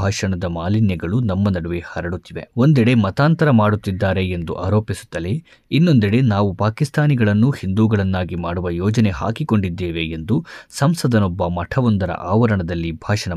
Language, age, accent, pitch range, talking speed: Kannada, 20-39, native, 95-125 Hz, 100 wpm